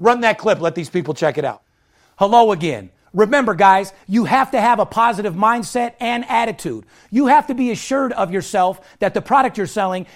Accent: American